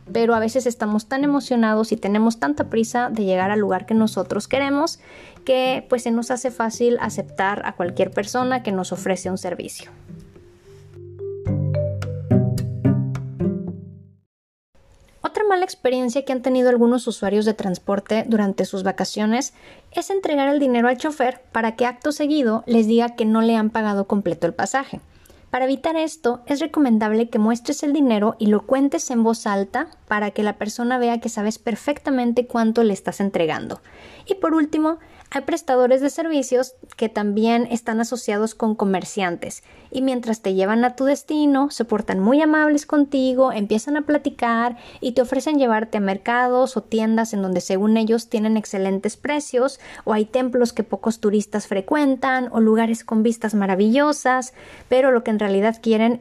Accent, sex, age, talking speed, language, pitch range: Mexican, female, 20-39, 160 wpm, Spanish, 210-260 Hz